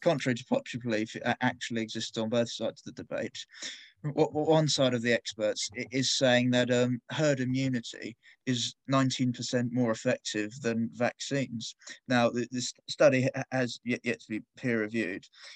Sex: male